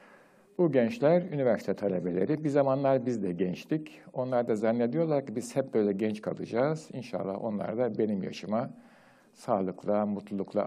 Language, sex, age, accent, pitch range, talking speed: Turkish, male, 60-79, native, 105-165 Hz, 140 wpm